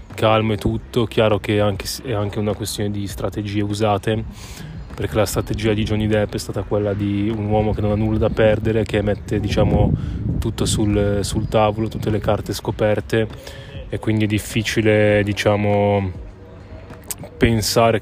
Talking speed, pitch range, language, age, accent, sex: 155 wpm, 100-110 Hz, Italian, 20-39, native, male